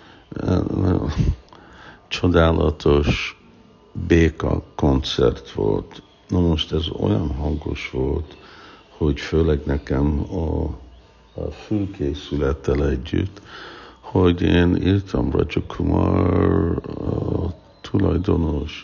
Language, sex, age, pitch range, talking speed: Hungarian, male, 60-79, 75-90 Hz, 75 wpm